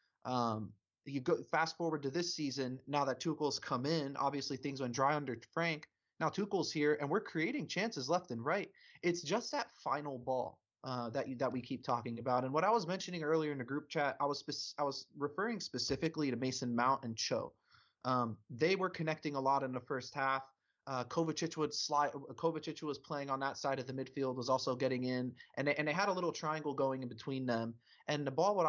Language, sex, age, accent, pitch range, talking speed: English, male, 20-39, American, 130-160 Hz, 220 wpm